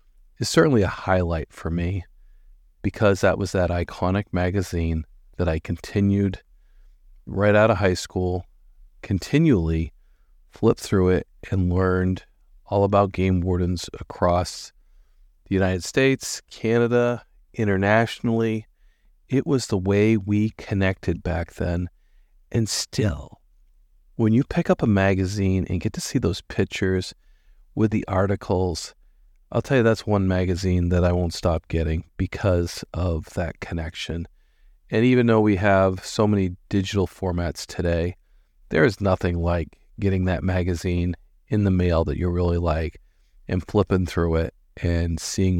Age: 40-59